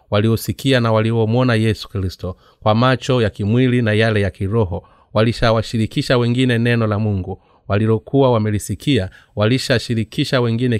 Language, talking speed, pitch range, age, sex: Swahili, 120 wpm, 110-130 Hz, 30-49, male